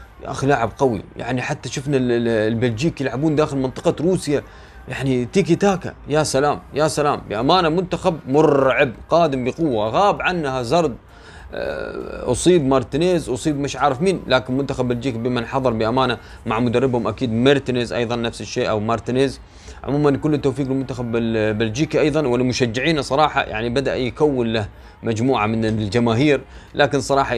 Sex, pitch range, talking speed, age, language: male, 115-145 Hz, 140 wpm, 30-49, Arabic